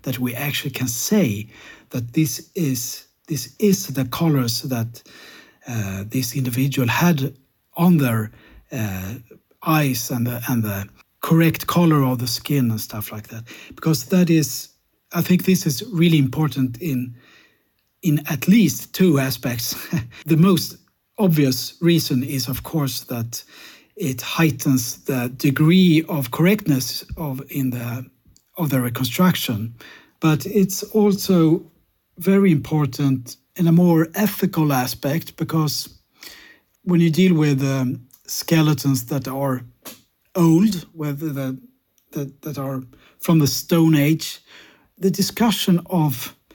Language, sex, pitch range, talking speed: English, male, 130-170 Hz, 130 wpm